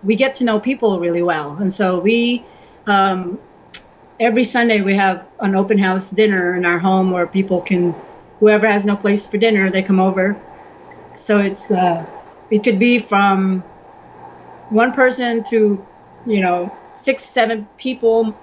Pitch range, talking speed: 195-235 Hz, 160 wpm